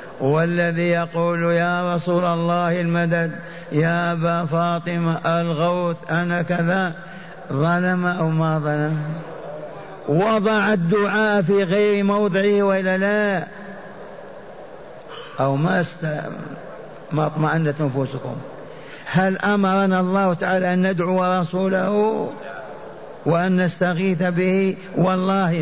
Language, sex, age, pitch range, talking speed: Arabic, male, 50-69, 155-190 Hz, 90 wpm